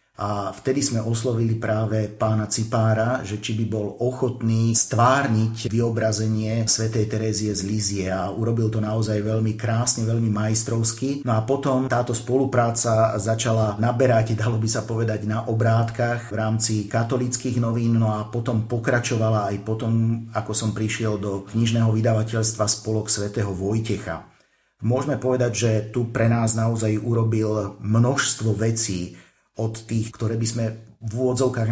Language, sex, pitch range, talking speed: Slovak, male, 110-115 Hz, 140 wpm